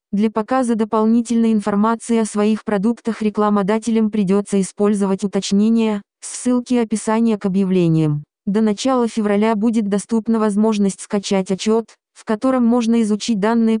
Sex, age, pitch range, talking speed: female, 20-39, 205-230 Hz, 120 wpm